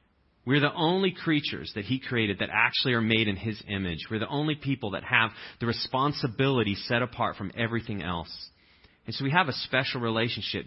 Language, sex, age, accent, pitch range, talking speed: English, male, 30-49, American, 100-135 Hz, 190 wpm